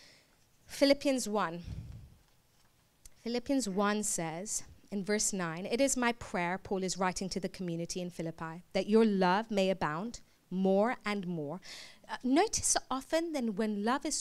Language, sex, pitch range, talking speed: English, female, 185-250 Hz, 150 wpm